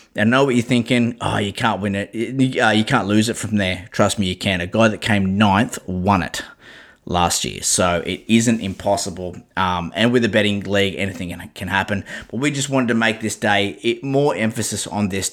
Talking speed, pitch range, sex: 225 wpm, 95-115 Hz, male